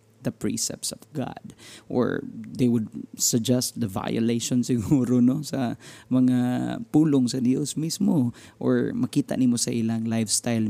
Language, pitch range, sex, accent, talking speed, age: Filipino, 115-130 Hz, male, native, 130 wpm, 20-39